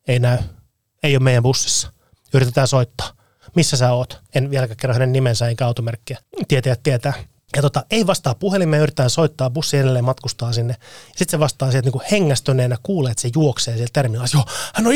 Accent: native